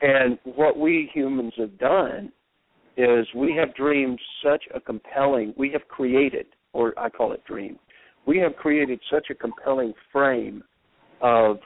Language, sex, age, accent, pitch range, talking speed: English, male, 50-69, American, 115-140 Hz, 150 wpm